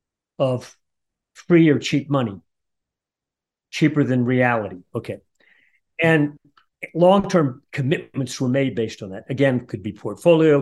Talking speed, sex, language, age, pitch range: 120 wpm, male, English, 50-69, 115-145 Hz